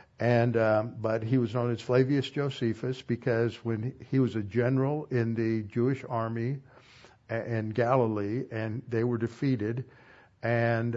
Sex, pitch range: male, 110-125 Hz